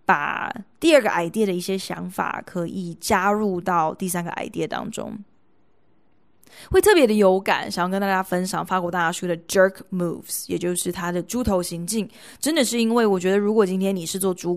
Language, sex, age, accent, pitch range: Chinese, female, 20-39, native, 180-210 Hz